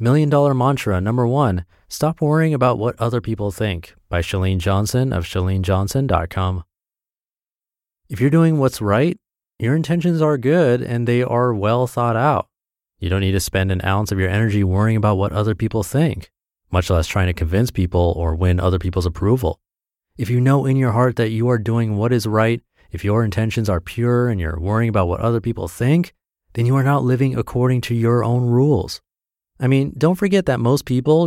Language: English